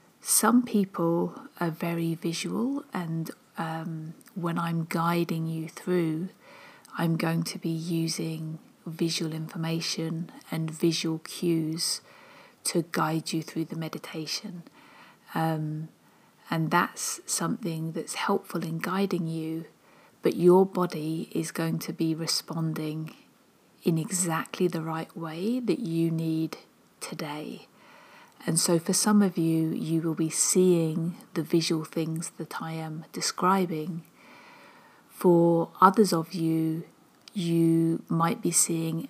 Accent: British